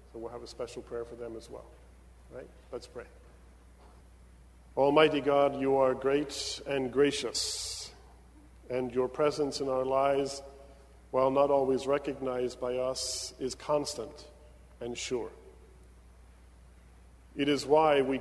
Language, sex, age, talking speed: English, male, 40-59, 135 wpm